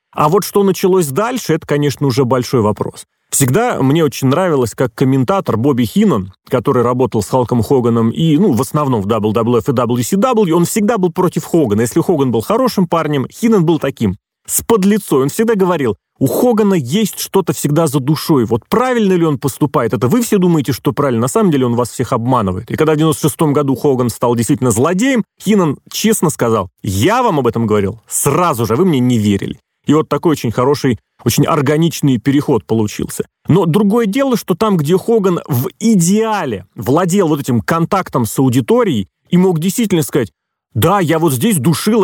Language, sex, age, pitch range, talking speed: Russian, male, 30-49, 125-180 Hz, 185 wpm